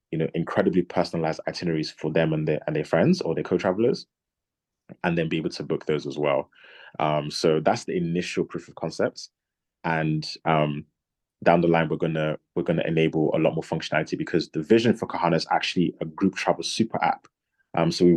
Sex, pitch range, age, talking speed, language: male, 80-85 Hz, 20-39, 200 wpm, English